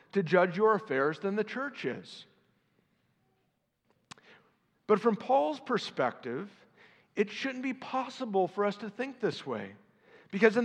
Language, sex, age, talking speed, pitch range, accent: English, male, 50-69, 135 wpm, 190-240 Hz, American